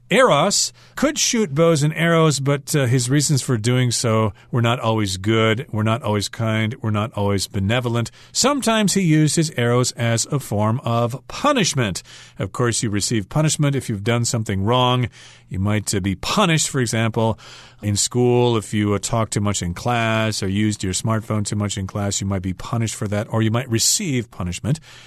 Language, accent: Chinese, American